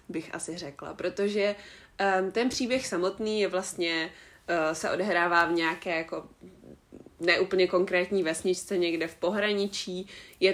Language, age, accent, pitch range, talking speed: Czech, 20-39, native, 170-190 Hz, 115 wpm